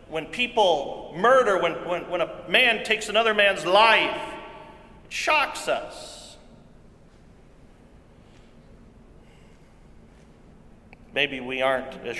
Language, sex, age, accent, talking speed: English, male, 40-59, American, 95 wpm